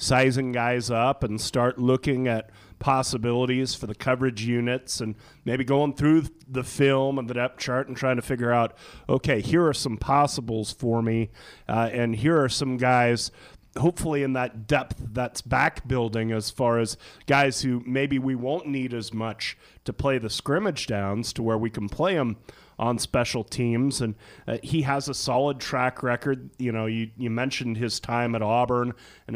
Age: 30-49